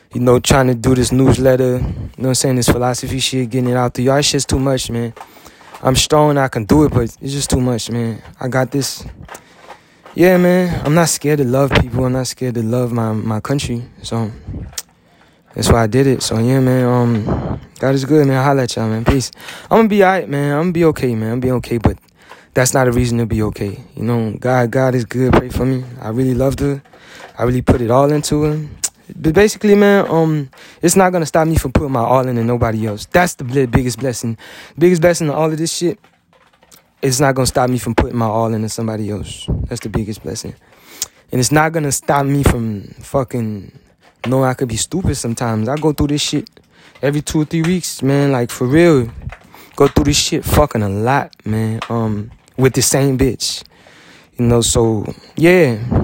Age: 20-39